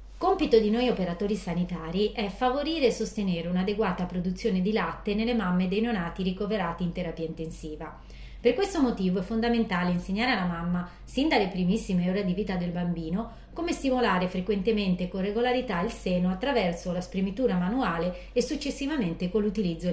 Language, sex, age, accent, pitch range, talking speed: Italian, female, 30-49, native, 175-240 Hz, 160 wpm